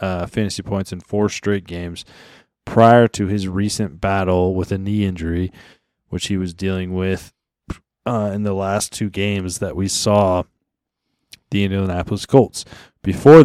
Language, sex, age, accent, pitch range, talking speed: English, male, 20-39, American, 95-110 Hz, 150 wpm